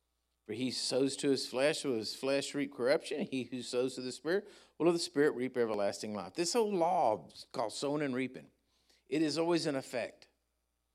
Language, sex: English, male